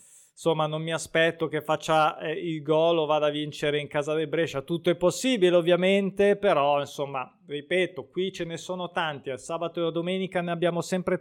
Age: 20-39